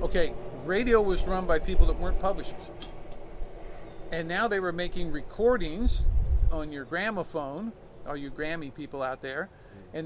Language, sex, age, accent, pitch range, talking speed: English, male, 40-59, American, 145-180 Hz, 150 wpm